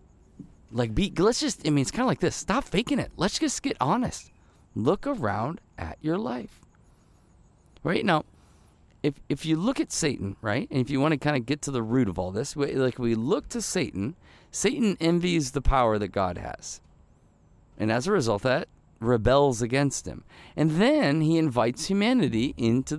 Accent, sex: American, male